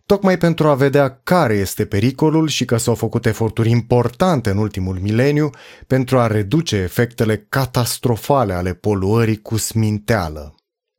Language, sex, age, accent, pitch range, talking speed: Romanian, male, 30-49, native, 110-160 Hz, 135 wpm